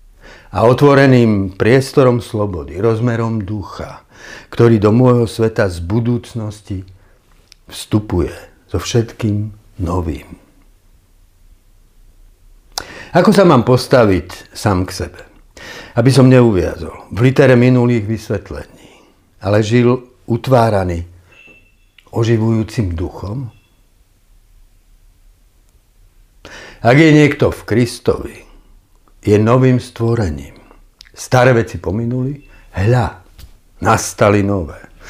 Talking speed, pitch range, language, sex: 85 wpm, 90-120 Hz, Slovak, male